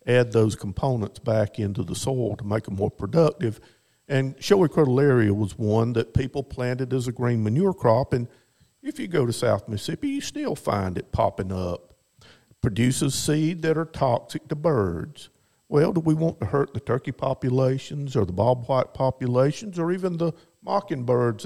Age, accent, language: 50-69, American, English